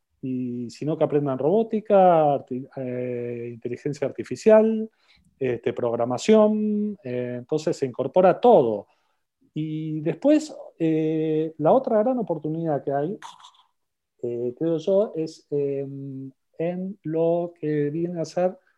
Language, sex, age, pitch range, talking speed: Spanish, male, 40-59, 130-180 Hz, 115 wpm